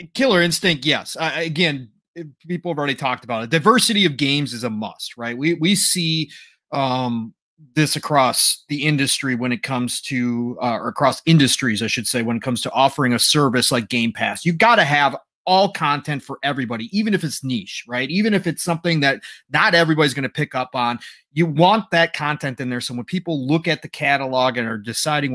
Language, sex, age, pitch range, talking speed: English, male, 30-49, 125-160 Hz, 210 wpm